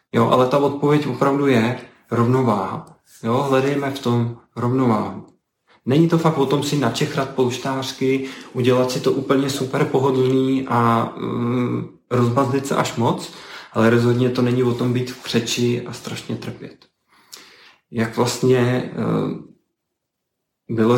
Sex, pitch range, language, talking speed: male, 115-130 Hz, Czech, 135 wpm